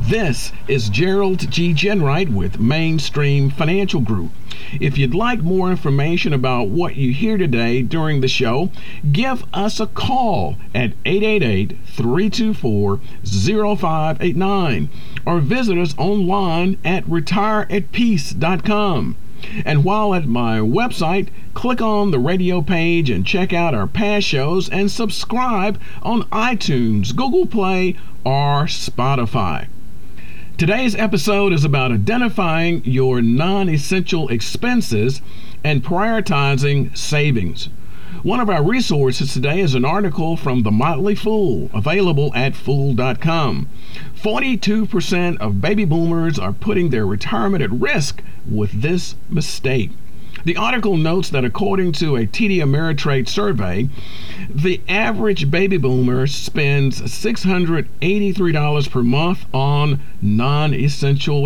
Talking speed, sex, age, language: 115 wpm, male, 50-69, English